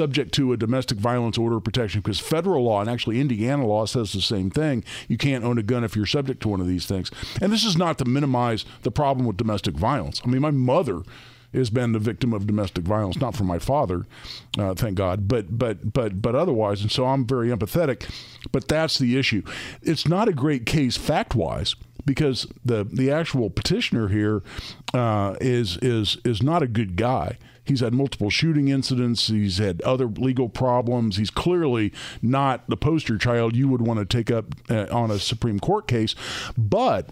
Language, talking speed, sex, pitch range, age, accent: English, 200 wpm, male, 105-135 Hz, 50-69, American